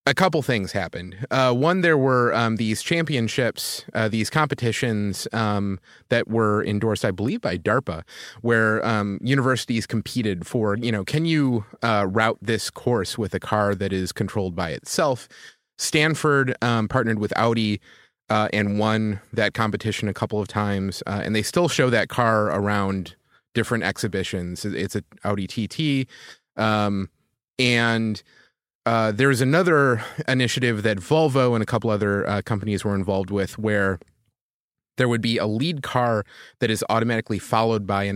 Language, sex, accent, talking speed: English, male, American, 160 wpm